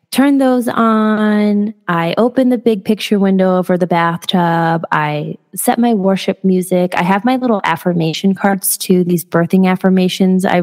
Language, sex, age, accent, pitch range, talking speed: English, female, 20-39, American, 165-210 Hz, 160 wpm